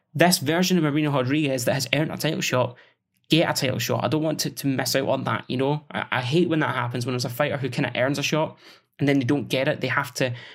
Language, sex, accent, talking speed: English, male, British, 290 wpm